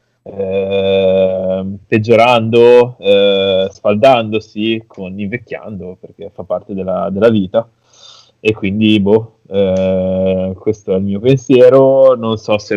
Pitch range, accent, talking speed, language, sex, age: 105-125 Hz, native, 115 wpm, Italian, male, 20-39